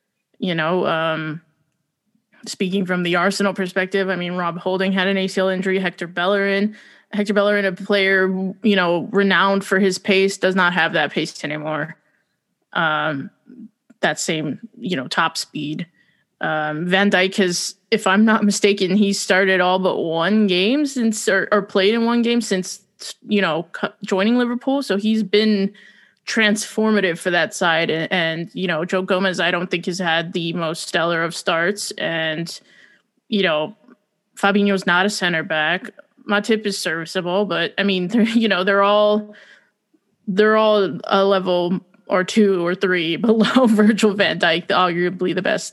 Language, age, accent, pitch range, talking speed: English, 20-39, American, 175-210 Hz, 160 wpm